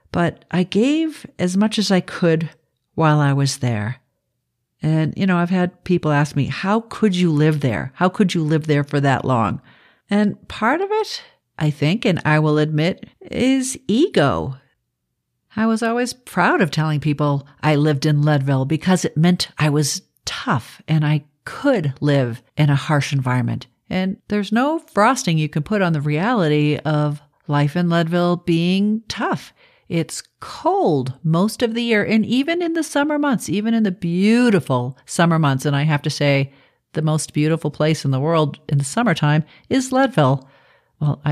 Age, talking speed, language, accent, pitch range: 50-69, 175 wpm, English, American, 140-205 Hz